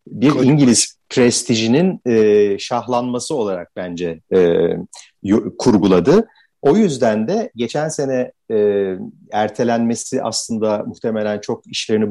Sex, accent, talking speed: male, native, 105 wpm